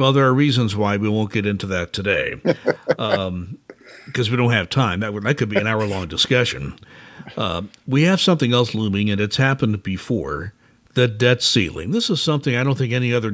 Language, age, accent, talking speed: English, 60-79, American, 200 wpm